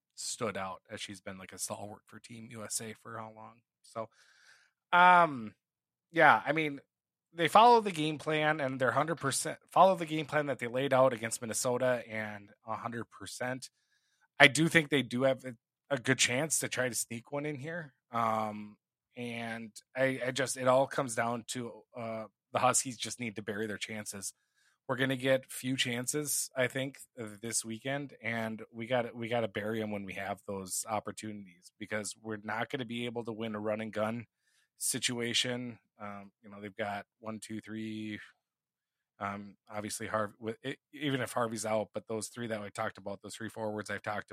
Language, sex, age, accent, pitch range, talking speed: English, male, 20-39, American, 110-130 Hz, 185 wpm